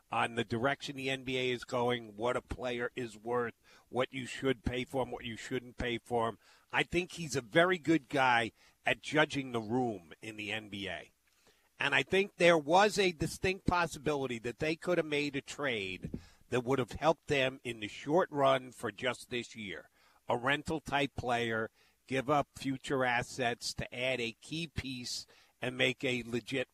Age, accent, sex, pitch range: 50-69, American, male, 115-150 Hz